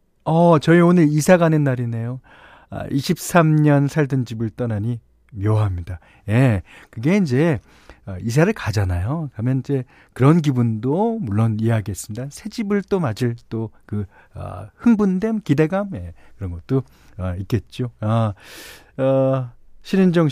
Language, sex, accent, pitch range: Korean, male, native, 110-160 Hz